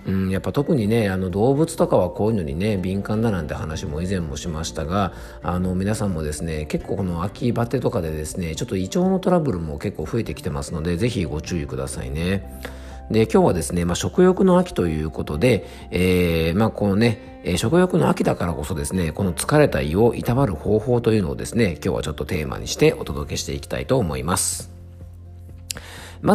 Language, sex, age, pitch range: Japanese, male, 40-59, 85-120 Hz